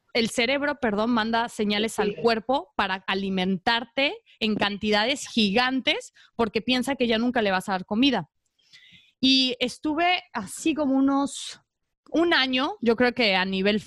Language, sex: English, female